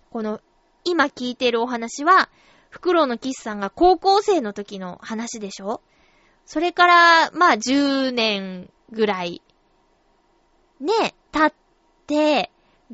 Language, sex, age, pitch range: Japanese, female, 20-39, 230-340 Hz